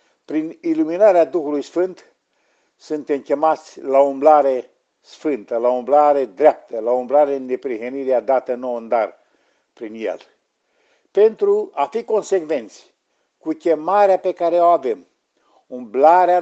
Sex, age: male, 50-69